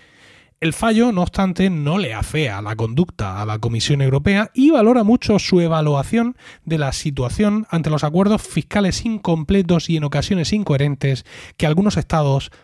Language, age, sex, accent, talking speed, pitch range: Spanish, 30-49, male, Spanish, 155 wpm, 145-195 Hz